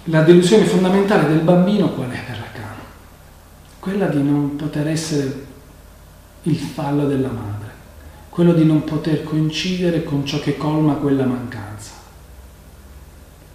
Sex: male